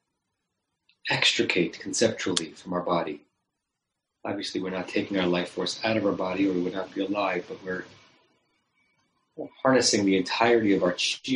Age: 40-59